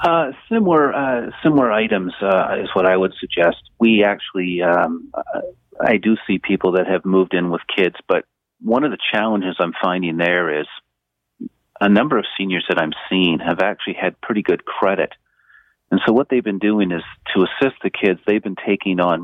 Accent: American